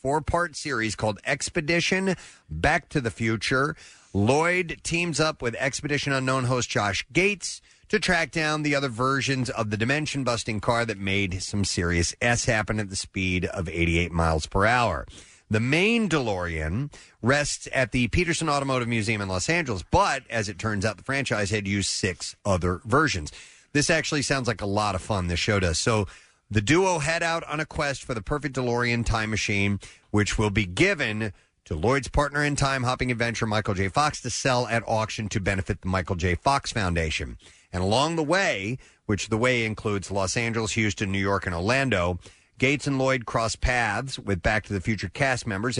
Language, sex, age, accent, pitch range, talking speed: English, male, 30-49, American, 100-135 Hz, 185 wpm